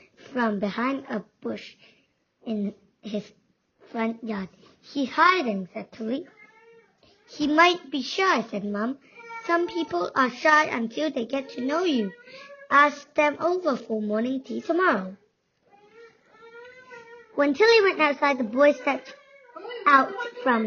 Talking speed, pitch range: 130 wpm, 255-360 Hz